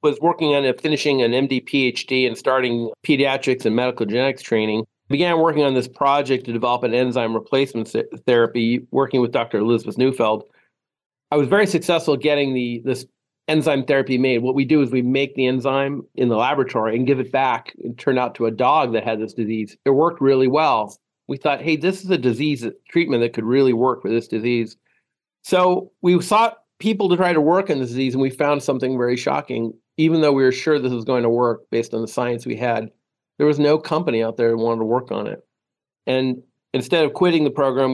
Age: 40-59